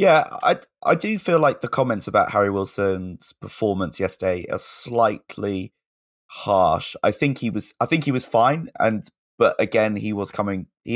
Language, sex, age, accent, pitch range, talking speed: English, male, 20-39, British, 90-110 Hz, 175 wpm